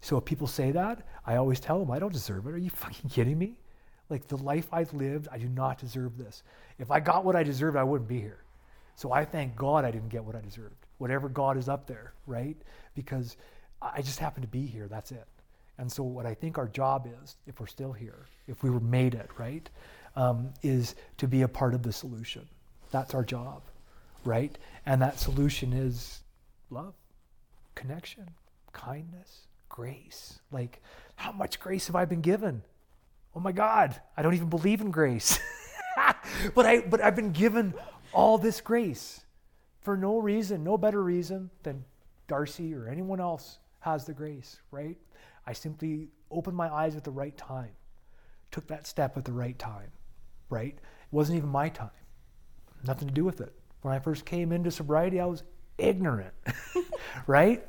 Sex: male